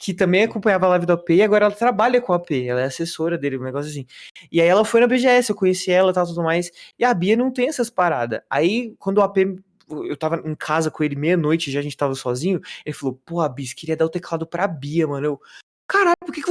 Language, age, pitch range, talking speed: Portuguese, 20-39, 150-205 Hz, 265 wpm